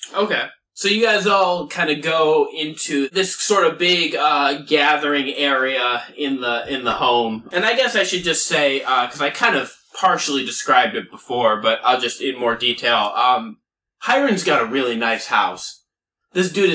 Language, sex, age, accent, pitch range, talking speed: English, male, 20-39, American, 135-180 Hz, 190 wpm